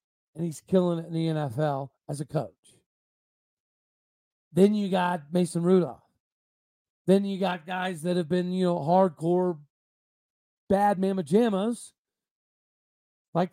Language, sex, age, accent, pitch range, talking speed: English, male, 40-59, American, 170-200 Hz, 125 wpm